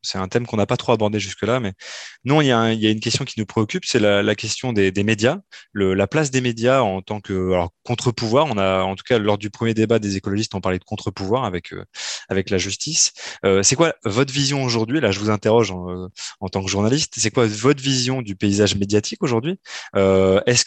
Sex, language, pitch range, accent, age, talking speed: male, French, 95-120 Hz, French, 20-39, 240 wpm